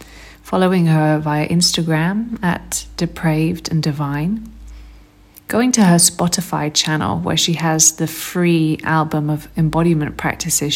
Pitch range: 155-175 Hz